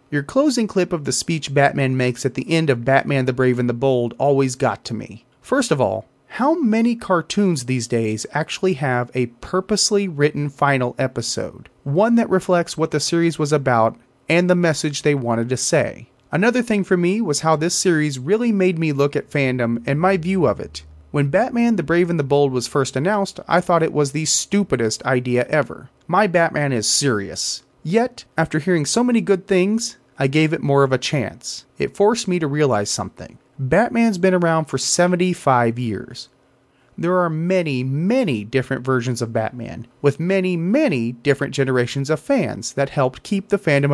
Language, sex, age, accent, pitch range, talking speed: English, male, 30-49, American, 130-180 Hz, 190 wpm